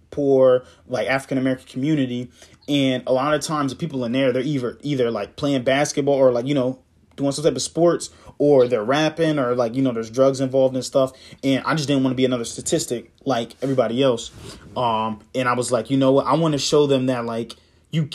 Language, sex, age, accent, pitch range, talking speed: English, male, 20-39, American, 125-145 Hz, 225 wpm